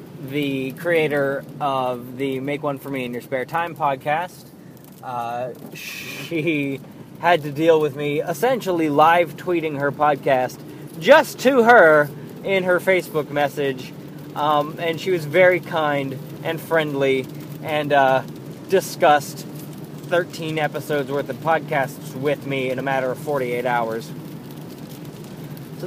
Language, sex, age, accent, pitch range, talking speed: English, male, 20-39, American, 145-175 Hz, 130 wpm